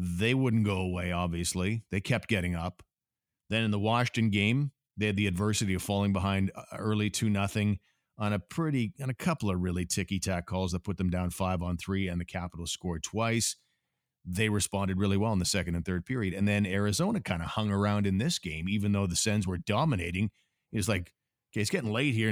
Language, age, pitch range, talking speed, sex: English, 50-69, 90-110 Hz, 205 wpm, male